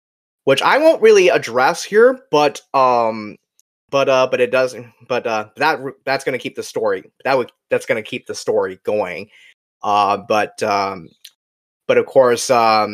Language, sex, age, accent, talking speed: English, male, 20-39, American, 160 wpm